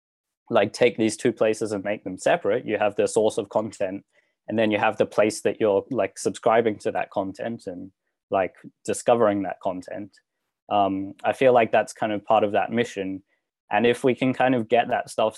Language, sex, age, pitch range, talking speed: English, male, 10-29, 100-115 Hz, 205 wpm